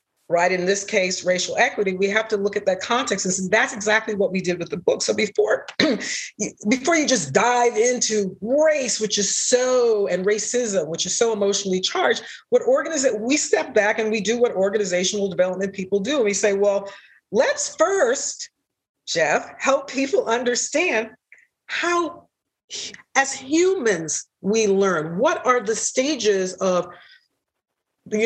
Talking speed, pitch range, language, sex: 160 wpm, 170-220 Hz, English, female